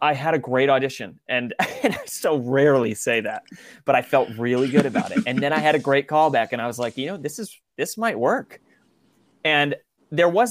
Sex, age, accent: male, 30-49, American